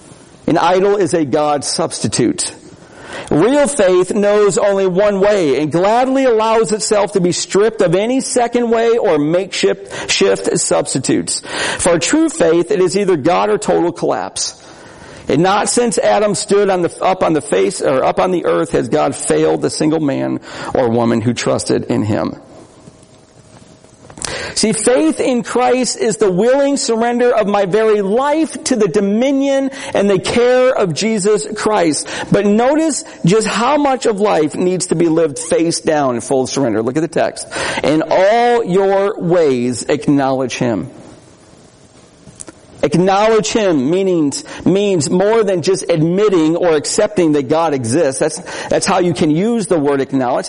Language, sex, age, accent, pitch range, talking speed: English, male, 50-69, American, 170-235 Hz, 160 wpm